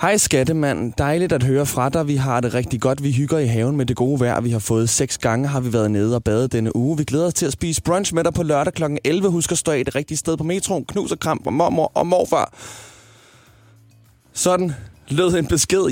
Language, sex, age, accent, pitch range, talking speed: Danish, male, 20-39, native, 115-145 Hz, 245 wpm